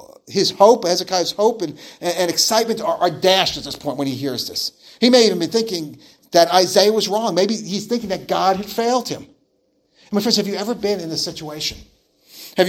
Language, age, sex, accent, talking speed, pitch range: English, 40-59, male, American, 220 wpm, 185-230 Hz